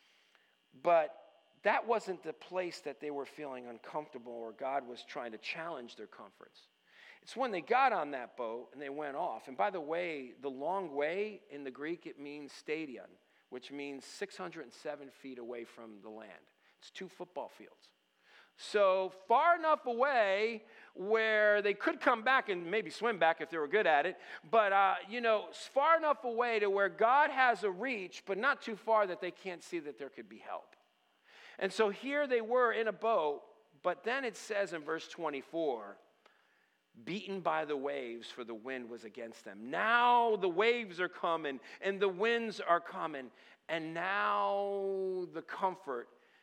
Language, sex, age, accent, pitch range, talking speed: English, male, 50-69, American, 150-220 Hz, 180 wpm